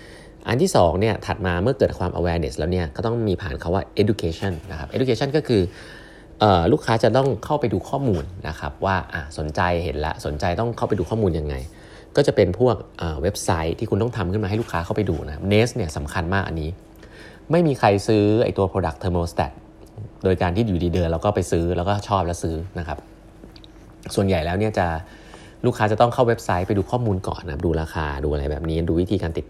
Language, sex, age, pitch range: Thai, male, 30-49, 80-110 Hz